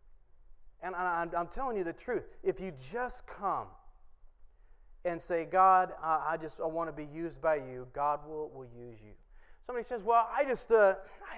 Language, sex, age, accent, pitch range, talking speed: English, male, 30-49, American, 160-205 Hz, 195 wpm